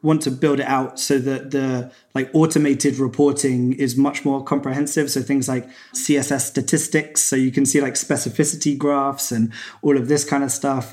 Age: 20-39